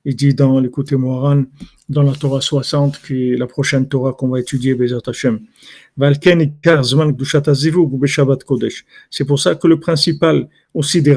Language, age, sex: French, 50-69, male